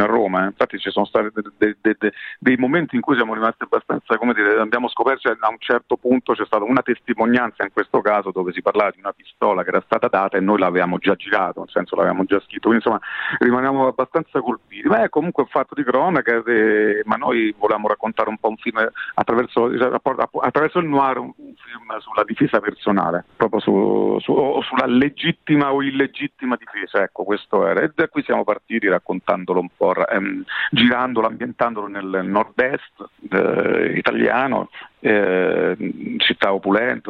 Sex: male